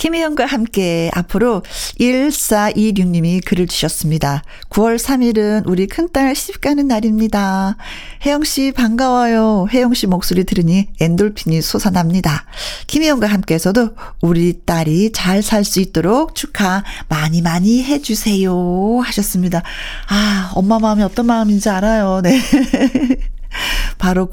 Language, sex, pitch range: Korean, female, 175-240 Hz